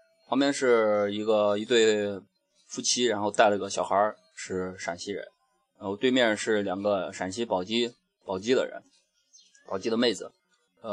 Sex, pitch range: male, 100-135 Hz